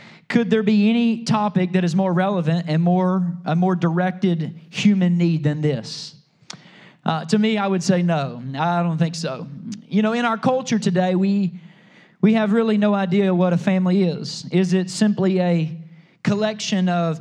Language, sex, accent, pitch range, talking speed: English, male, American, 165-205 Hz, 180 wpm